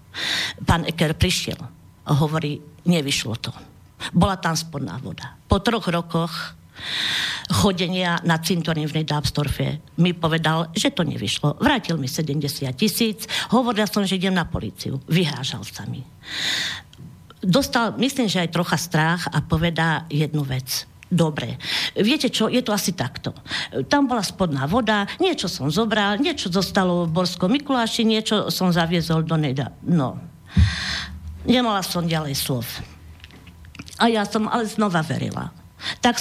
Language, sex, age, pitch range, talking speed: Slovak, female, 50-69, 145-205 Hz, 140 wpm